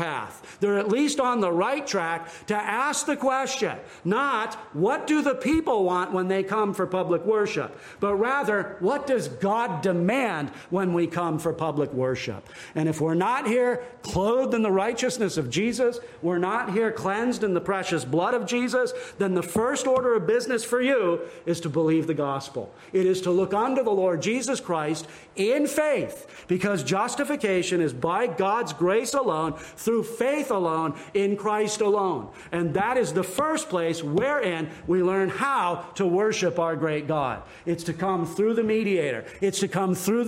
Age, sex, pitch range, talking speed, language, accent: 50-69, male, 170-235 Hz, 180 wpm, English, American